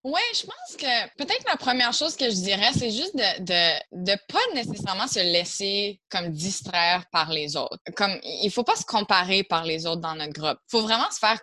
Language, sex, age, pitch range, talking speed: English, female, 20-39, 175-225 Hz, 215 wpm